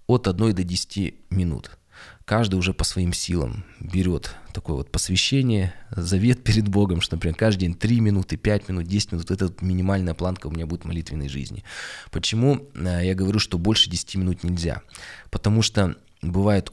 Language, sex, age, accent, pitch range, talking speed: Russian, male, 20-39, native, 85-105 Hz, 170 wpm